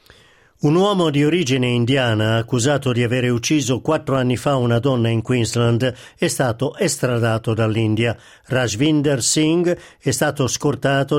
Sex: male